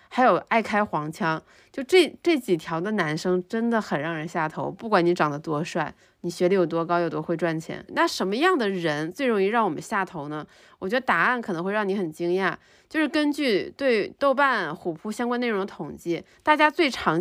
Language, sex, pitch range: Chinese, female, 180-250 Hz